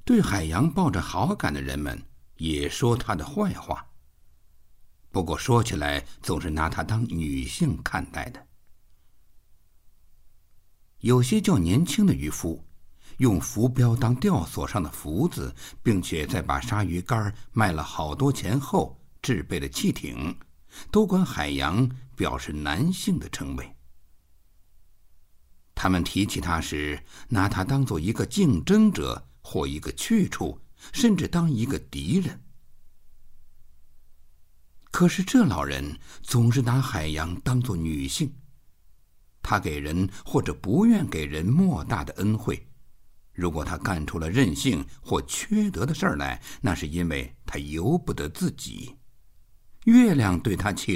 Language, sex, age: Chinese, male, 60-79